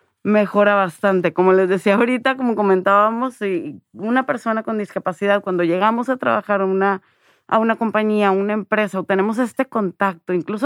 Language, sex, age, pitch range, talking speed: Spanish, female, 30-49, 195-250 Hz, 165 wpm